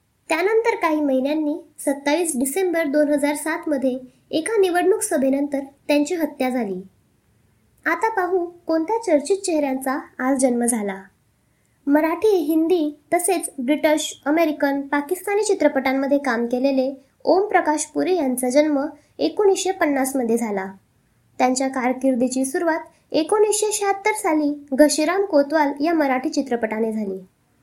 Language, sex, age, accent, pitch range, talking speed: Marathi, male, 20-39, native, 265-340 Hz, 105 wpm